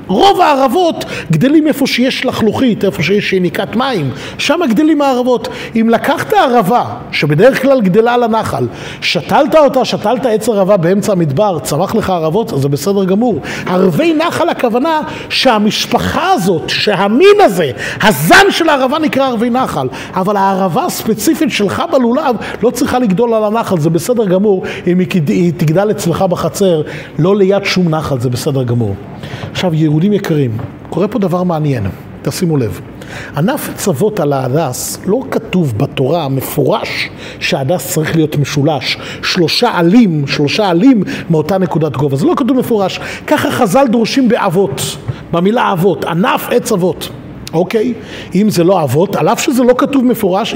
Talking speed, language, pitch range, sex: 145 wpm, Hebrew, 165-245 Hz, male